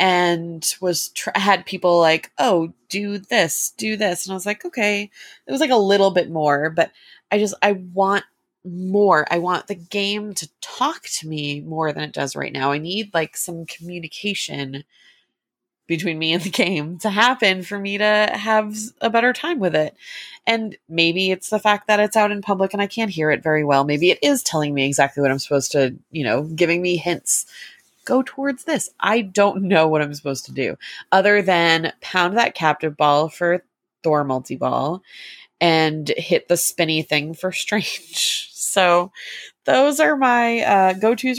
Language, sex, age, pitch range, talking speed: English, female, 20-39, 160-205 Hz, 185 wpm